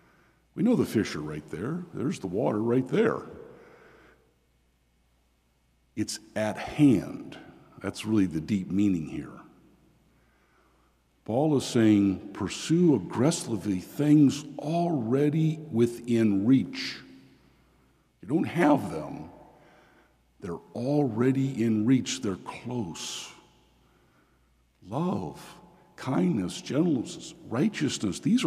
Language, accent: English, American